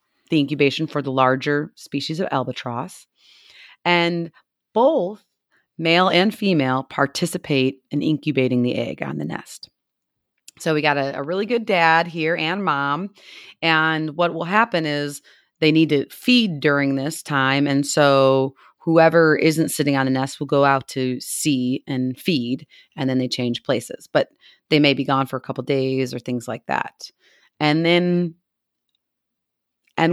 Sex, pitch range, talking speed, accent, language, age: female, 135-170 Hz, 155 wpm, American, English, 30-49